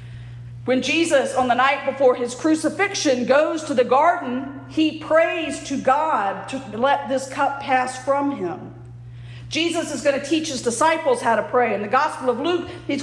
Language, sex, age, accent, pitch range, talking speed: English, female, 50-69, American, 235-310 Hz, 180 wpm